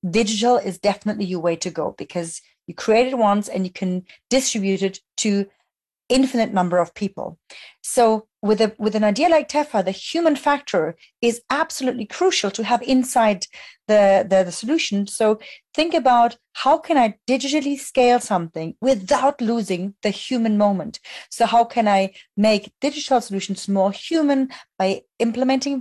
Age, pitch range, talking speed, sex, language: 40-59, 195-250 Hz, 160 wpm, female, English